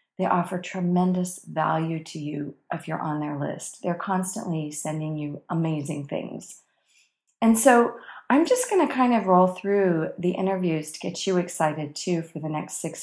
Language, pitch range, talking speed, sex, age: English, 160-215 Hz, 175 wpm, female, 40-59